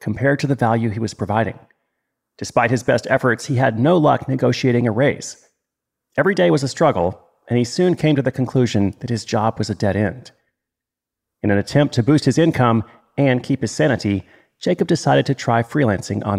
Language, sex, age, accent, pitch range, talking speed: English, male, 40-59, American, 110-140 Hz, 200 wpm